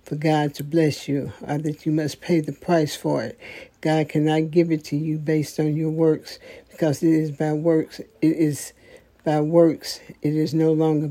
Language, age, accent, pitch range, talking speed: English, 60-79, American, 150-165 Hz, 195 wpm